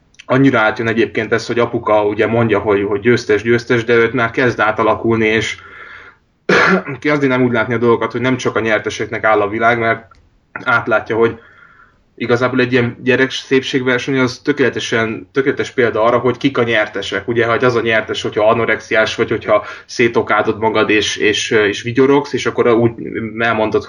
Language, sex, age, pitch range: Hungarian, male, 20-39, 110-125 Hz